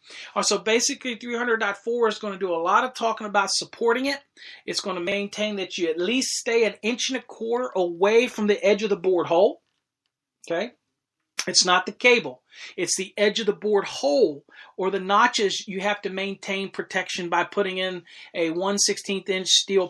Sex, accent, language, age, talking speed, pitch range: male, American, English, 40-59, 195 wpm, 180-220 Hz